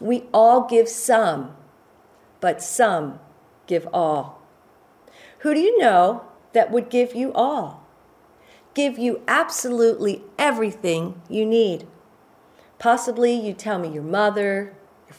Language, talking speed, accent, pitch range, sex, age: English, 120 wpm, American, 195-285 Hz, female, 40-59